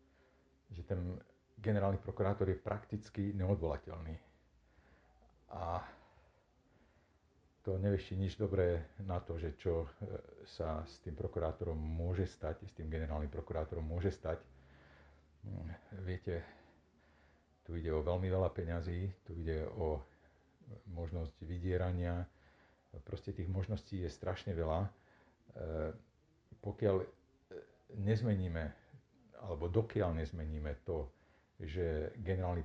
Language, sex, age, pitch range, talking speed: Slovak, male, 50-69, 80-95 Hz, 100 wpm